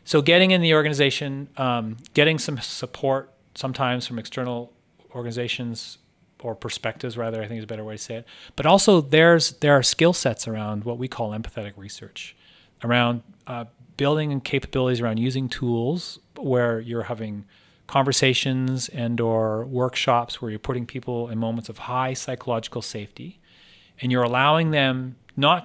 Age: 30-49